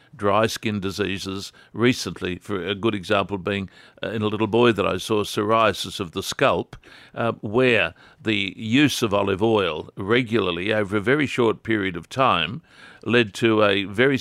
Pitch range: 100-120 Hz